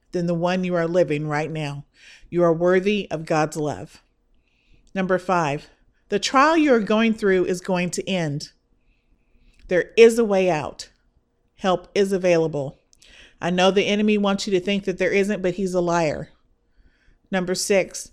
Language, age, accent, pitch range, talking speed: English, 50-69, American, 170-205 Hz, 165 wpm